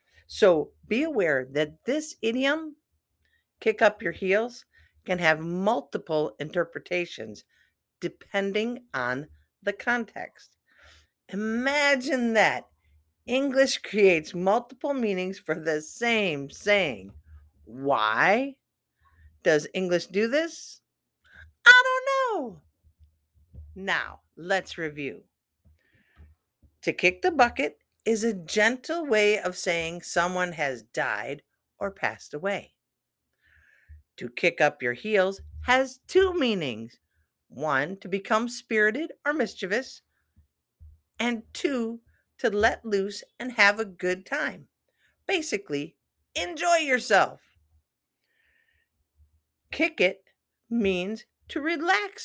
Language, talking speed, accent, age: English, 100 wpm, American, 50-69